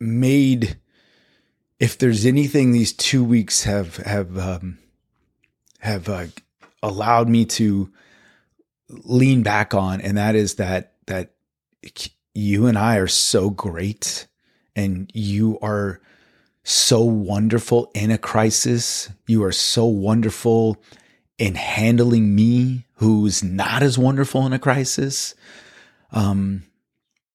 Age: 30-49